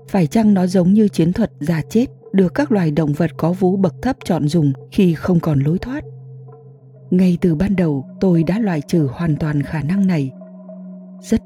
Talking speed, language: 205 wpm, Vietnamese